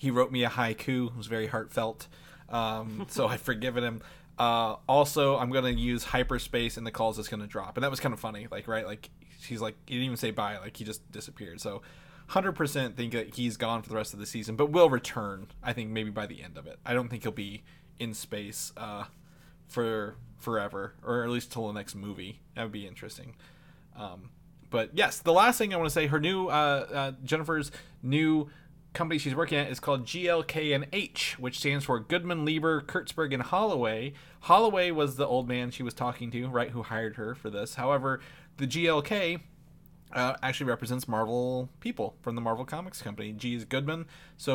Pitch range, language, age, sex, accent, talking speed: 115-155 Hz, English, 20-39, male, American, 210 wpm